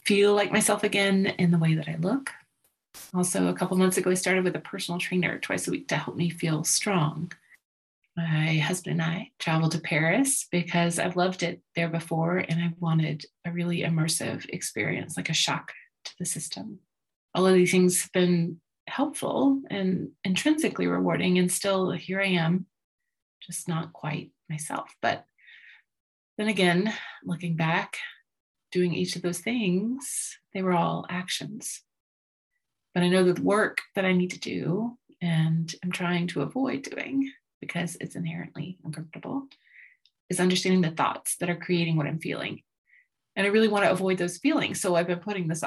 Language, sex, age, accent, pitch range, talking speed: English, female, 30-49, American, 165-200 Hz, 170 wpm